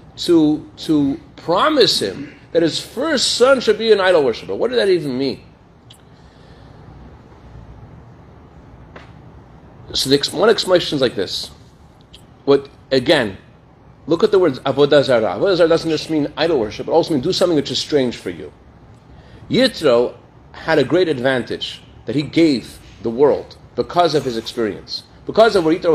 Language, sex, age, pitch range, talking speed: English, male, 40-59, 130-185 Hz, 155 wpm